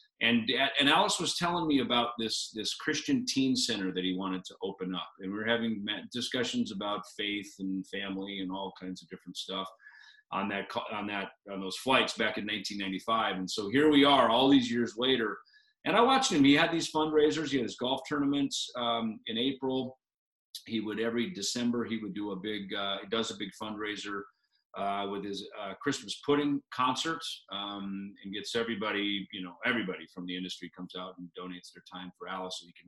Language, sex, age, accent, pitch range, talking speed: English, male, 40-59, American, 95-140 Hz, 200 wpm